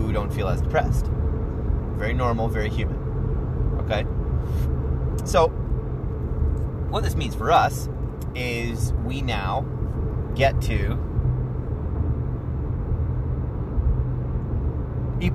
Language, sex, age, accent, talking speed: English, male, 30-49, American, 80 wpm